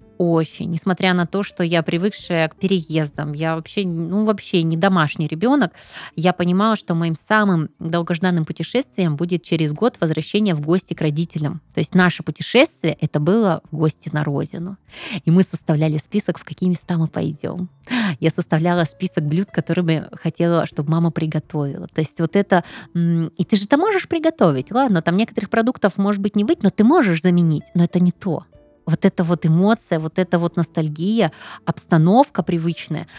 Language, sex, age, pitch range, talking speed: Russian, female, 20-39, 160-195 Hz, 175 wpm